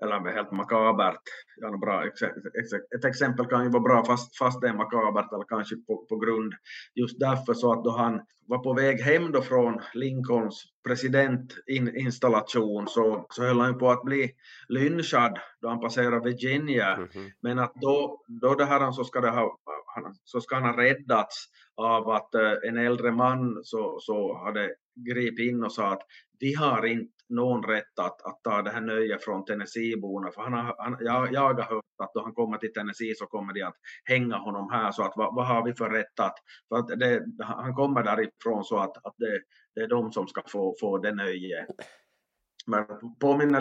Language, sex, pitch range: Swedish, male, 115-130 Hz